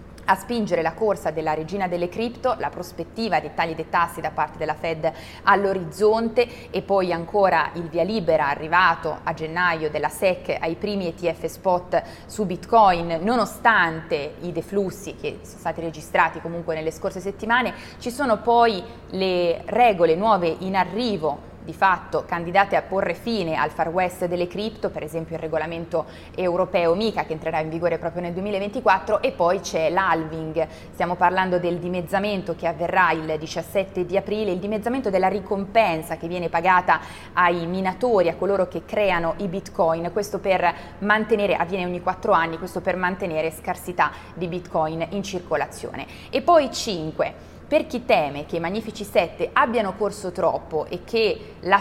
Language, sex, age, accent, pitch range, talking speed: Italian, female, 20-39, native, 165-205 Hz, 160 wpm